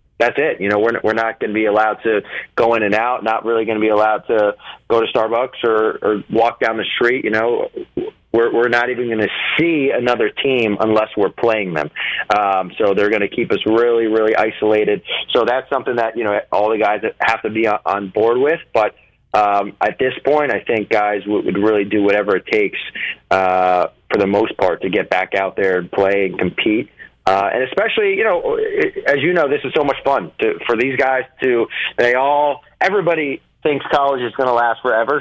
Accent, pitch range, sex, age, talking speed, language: American, 110-130 Hz, male, 30-49, 215 wpm, English